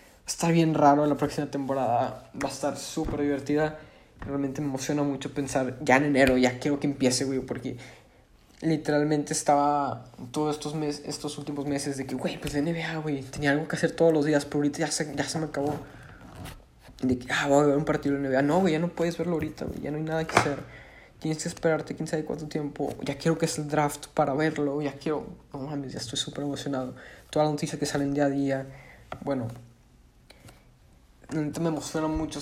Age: 20-39